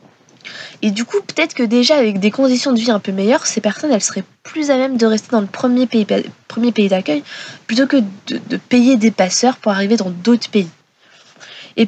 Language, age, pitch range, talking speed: French, 20-39, 195-235 Hz, 220 wpm